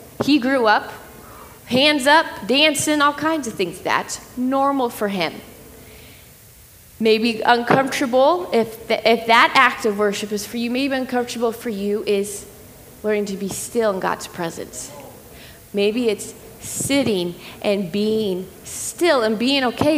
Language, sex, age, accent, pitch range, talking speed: English, female, 20-39, American, 205-255 Hz, 140 wpm